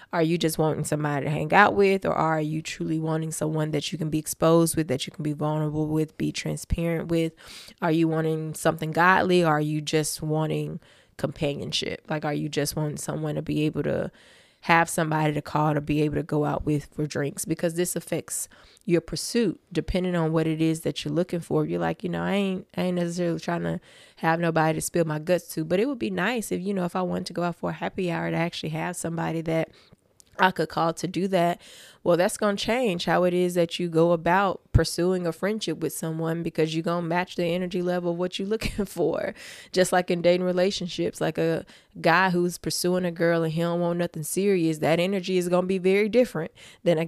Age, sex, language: 20-39, female, English